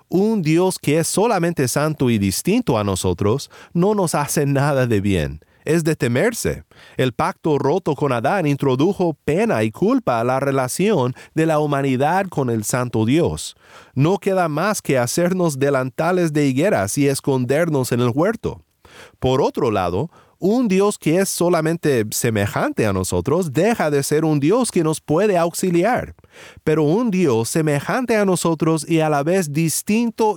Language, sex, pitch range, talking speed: Spanish, male, 130-185 Hz, 160 wpm